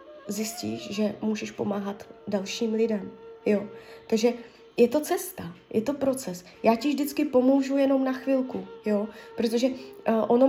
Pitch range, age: 215-265 Hz, 20-39